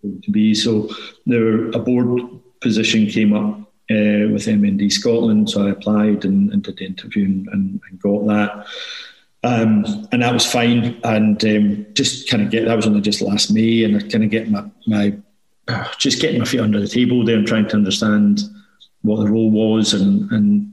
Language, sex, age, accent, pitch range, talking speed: English, male, 40-59, British, 105-130 Hz, 195 wpm